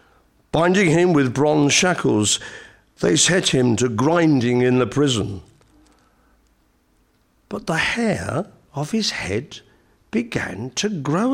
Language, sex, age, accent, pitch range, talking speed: English, male, 50-69, British, 120-180 Hz, 115 wpm